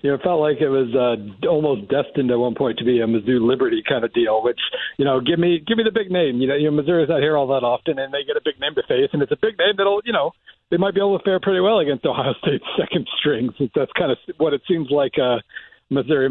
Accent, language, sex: American, English, male